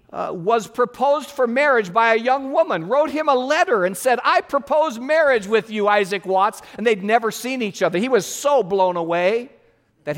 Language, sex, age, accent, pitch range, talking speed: English, male, 50-69, American, 195-280 Hz, 200 wpm